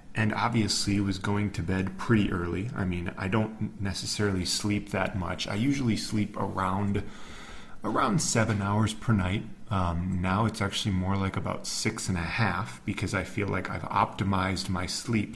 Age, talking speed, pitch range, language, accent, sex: 30-49, 170 wpm, 95-110 Hz, English, American, male